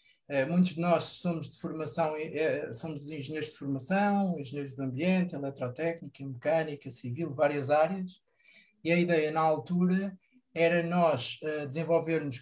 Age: 20-39